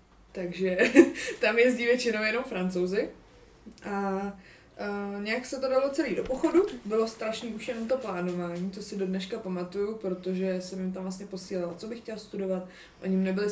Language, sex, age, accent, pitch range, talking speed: Czech, female, 20-39, native, 185-225 Hz, 175 wpm